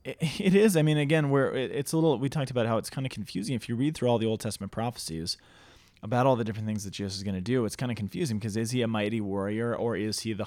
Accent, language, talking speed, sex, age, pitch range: American, English, 290 wpm, male, 30-49, 105-140 Hz